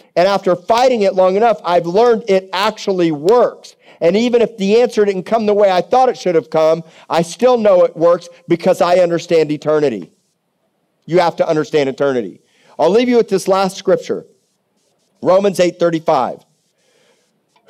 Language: English